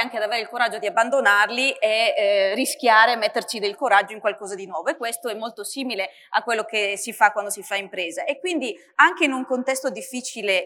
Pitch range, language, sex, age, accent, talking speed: 215-255 Hz, Italian, female, 30-49, native, 215 wpm